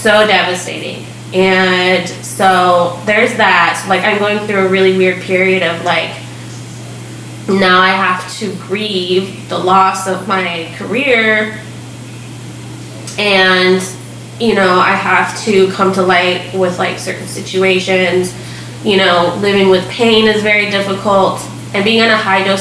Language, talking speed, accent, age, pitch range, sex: English, 140 wpm, American, 20-39, 180-205 Hz, female